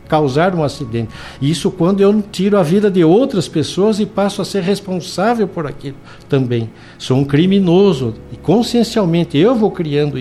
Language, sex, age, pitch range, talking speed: Portuguese, male, 60-79, 135-180 Hz, 165 wpm